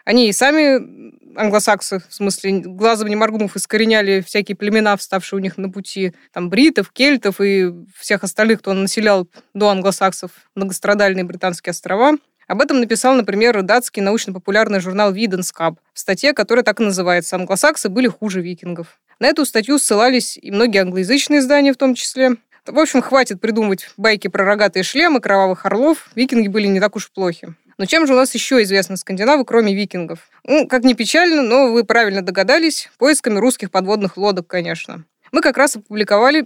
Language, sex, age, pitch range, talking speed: Russian, female, 20-39, 195-250 Hz, 170 wpm